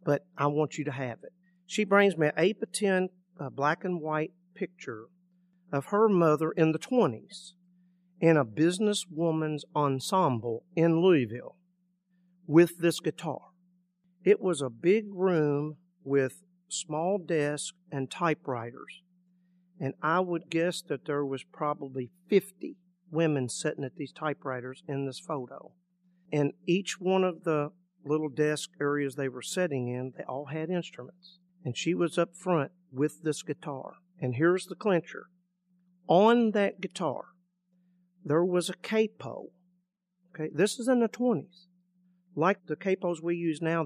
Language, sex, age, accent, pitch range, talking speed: English, male, 50-69, American, 145-180 Hz, 145 wpm